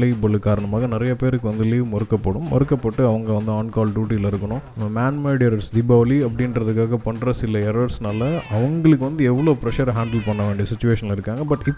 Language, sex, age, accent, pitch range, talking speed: Tamil, male, 20-39, native, 105-125 Hz, 60 wpm